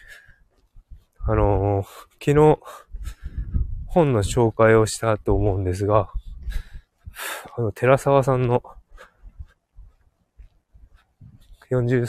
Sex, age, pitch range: male, 20-39, 90-120 Hz